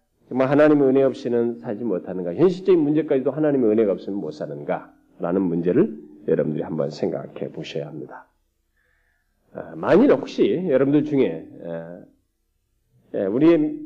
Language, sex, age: Korean, male, 40-59